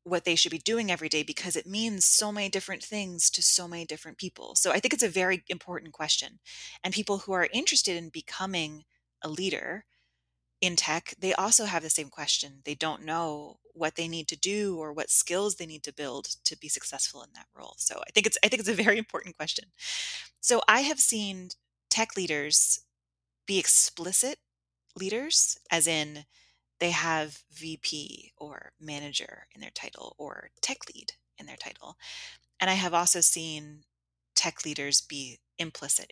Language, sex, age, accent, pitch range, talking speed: French, female, 20-39, American, 145-195 Hz, 185 wpm